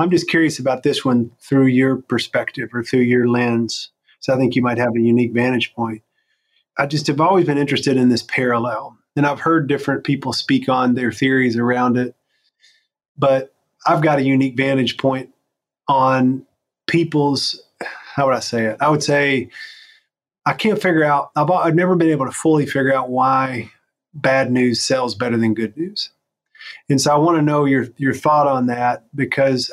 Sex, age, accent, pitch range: male, 30-49, American, 125-150 Hz